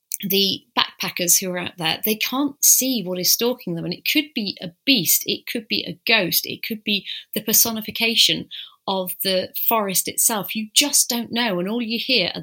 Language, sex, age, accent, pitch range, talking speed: English, female, 30-49, British, 175-225 Hz, 205 wpm